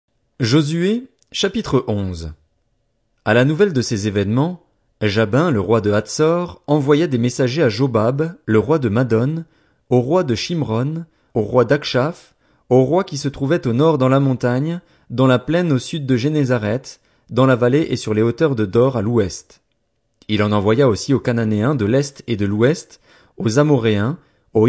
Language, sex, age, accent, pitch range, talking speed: French, male, 30-49, French, 110-145 Hz, 175 wpm